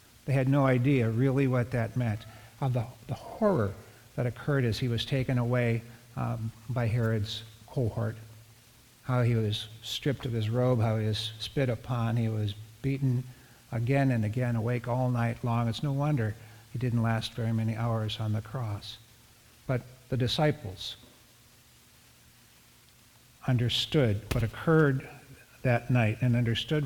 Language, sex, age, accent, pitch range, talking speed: English, male, 60-79, American, 115-135 Hz, 145 wpm